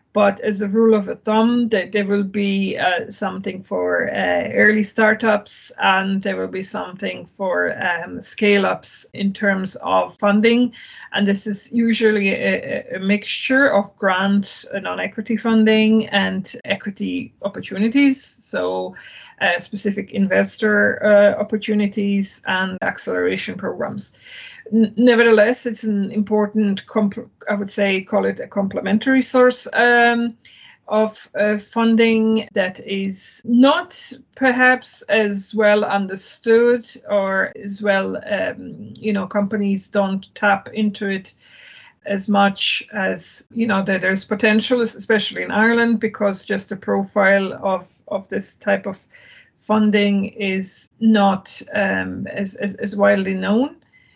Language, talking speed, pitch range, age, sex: English, 130 wpm, 200-225 Hz, 30-49, female